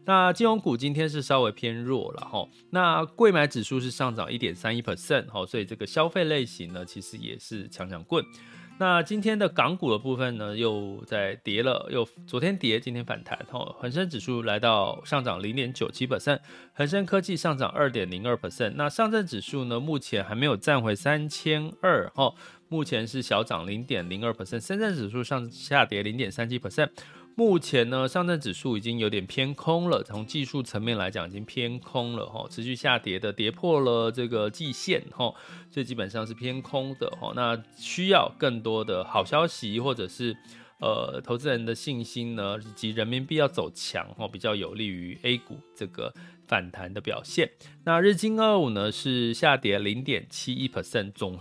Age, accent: 30-49, native